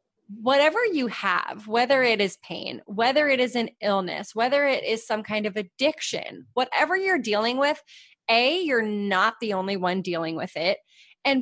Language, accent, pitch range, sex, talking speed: English, American, 195-270 Hz, female, 175 wpm